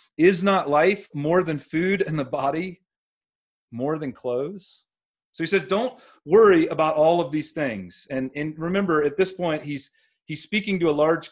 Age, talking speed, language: 30-49, 180 wpm, English